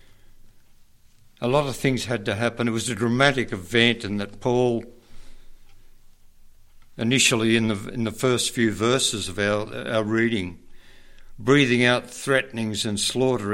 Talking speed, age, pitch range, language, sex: 140 wpm, 60-79, 105-115 Hz, English, male